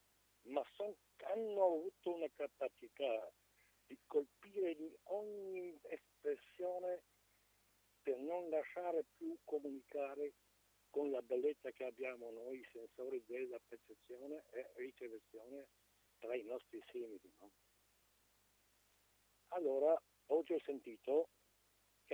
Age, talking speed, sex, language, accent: 60-79, 105 wpm, male, Italian, native